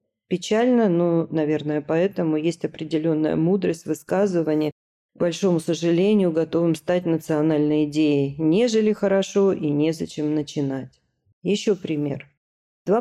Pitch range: 155-190 Hz